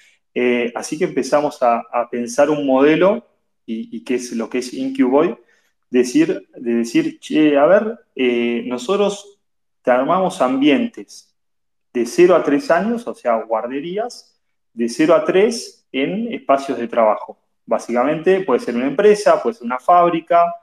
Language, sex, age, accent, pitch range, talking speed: Spanish, male, 20-39, Argentinian, 120-190 Hz, 155 wpm